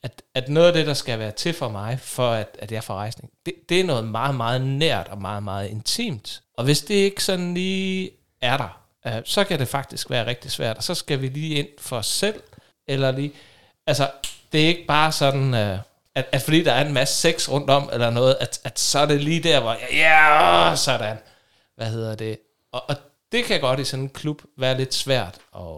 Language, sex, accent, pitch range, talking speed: Danish, male, native, 120-155 Hz, 235 wpm